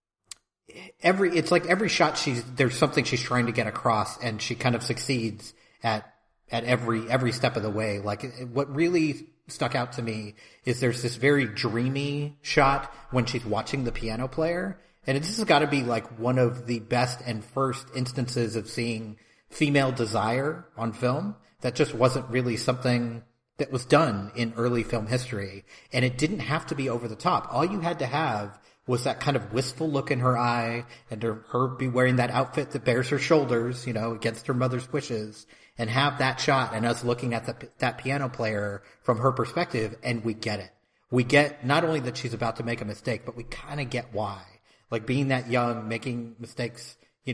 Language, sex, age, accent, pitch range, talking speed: English, male, 30-49, American, 115-140 Hz, 200 wpm